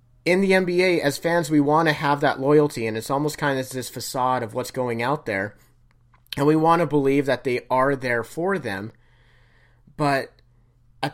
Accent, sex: American, male